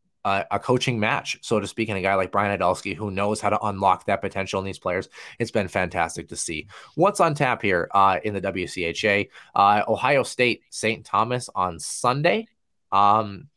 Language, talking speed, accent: English, 195 wpm, American